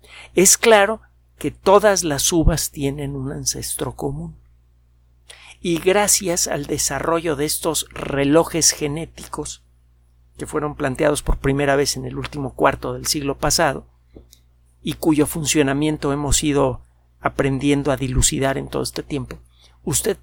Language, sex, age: Spanish, male, 50-69